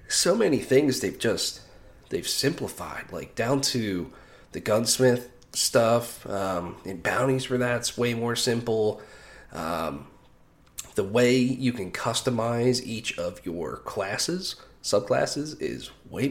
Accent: American